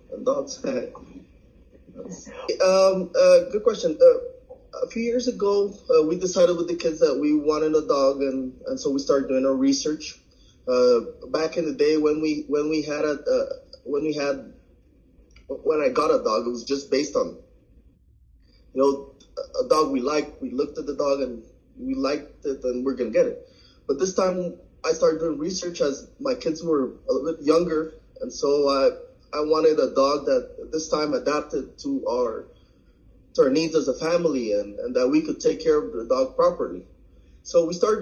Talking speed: 195 wpm